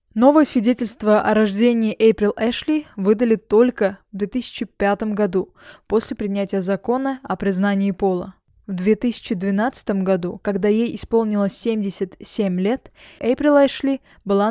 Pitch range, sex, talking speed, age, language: 200-235 Hz, female, 115 wpm, 20-39, Russian